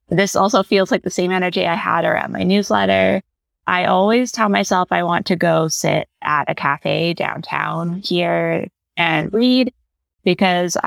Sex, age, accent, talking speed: female, 20-39, American, 160 wpm